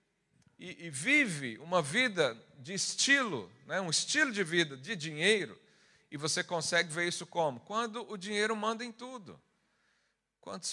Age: 50-69